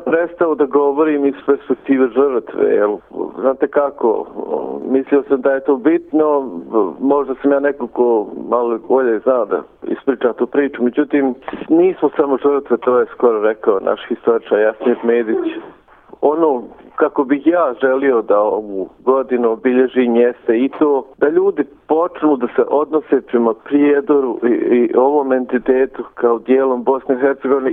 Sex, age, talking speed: male, 50-69, 135 wpm